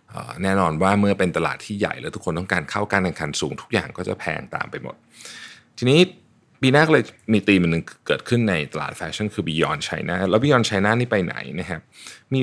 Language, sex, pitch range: Thai, male, 95-120 Hz